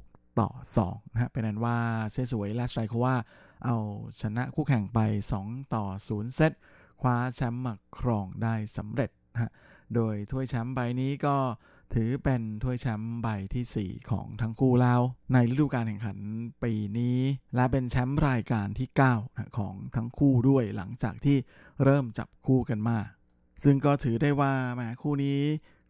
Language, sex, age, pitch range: Thai, male, 20-39, 110-130 Hz